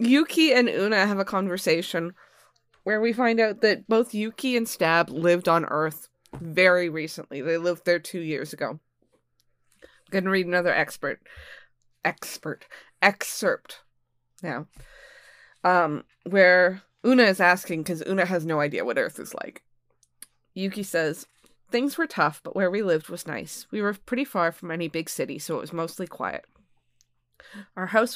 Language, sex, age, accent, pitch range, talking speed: English, female, 20-39, American, 155-200 Hz, 160 wpm